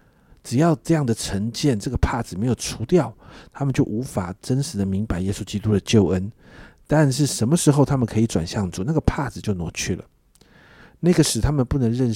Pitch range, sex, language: 100-135 Hz, male, Chinese